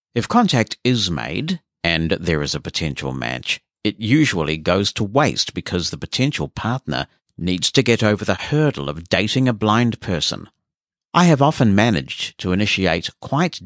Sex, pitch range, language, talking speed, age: male, 85-115 Hz, English, 165 wpm, 50-69